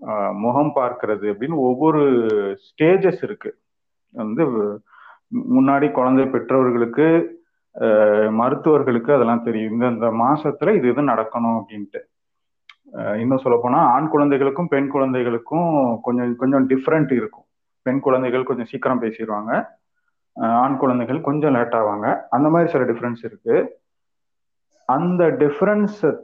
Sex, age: male, 30-49